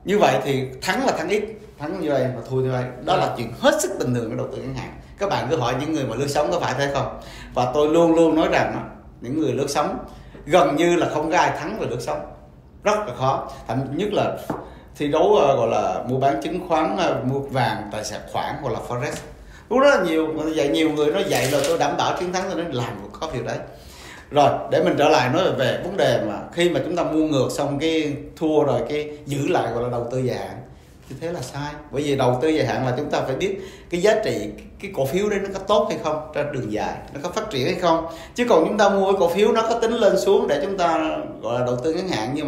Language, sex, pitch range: Vietnamese, male, 130-175 Hz